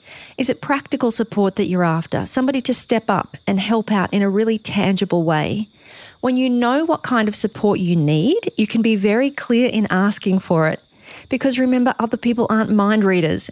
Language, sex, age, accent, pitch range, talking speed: English, female, 40-59, Australian, 200-250 Hz, 195 wpm